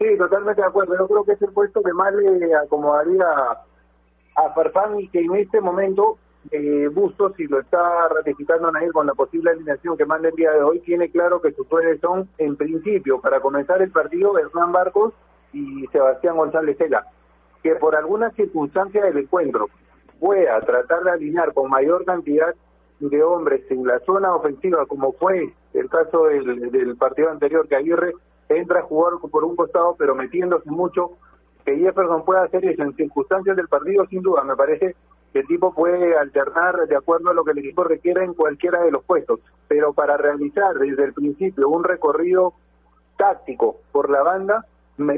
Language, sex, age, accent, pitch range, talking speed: Spanish, male, 40-59, Argentinian, 150-195 Hz, 185 wpm